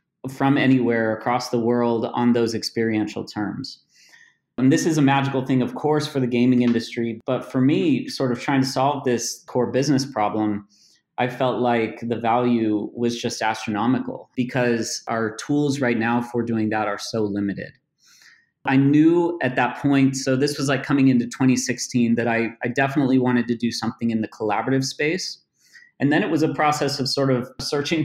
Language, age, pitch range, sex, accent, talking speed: English, 30-49, 115-135 Hz, male, American, 185 wpm